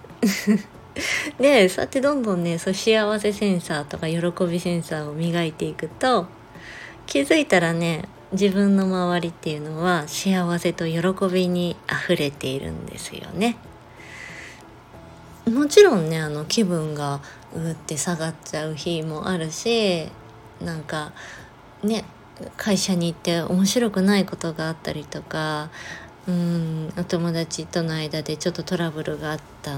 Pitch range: 155-190 Hz